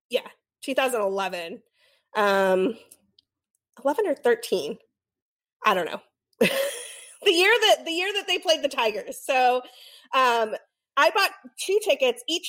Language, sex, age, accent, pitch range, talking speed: English, female, 30-49, American, 215-300 Hz, 125 wpm